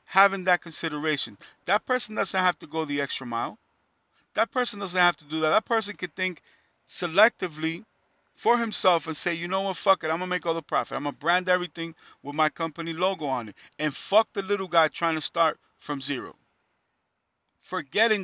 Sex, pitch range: male, 155-195 Hz